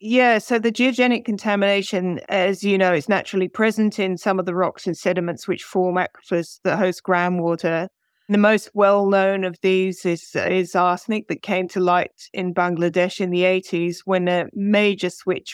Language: English